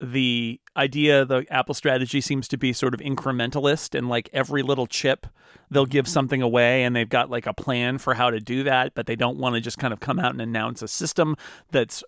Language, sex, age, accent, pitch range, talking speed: English, male, 40-59, American, 120-145 Hz, 230 wpm